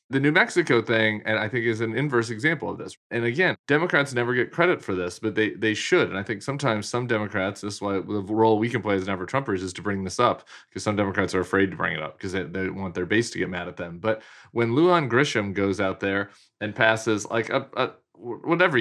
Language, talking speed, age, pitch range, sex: English, 255 wpm, 30-49, 95-115 Hz, male